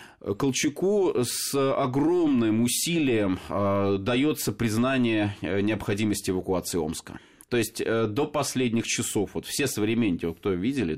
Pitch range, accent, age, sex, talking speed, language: 100-130 Hz, native, 30-49, male, 115 wpm, Russian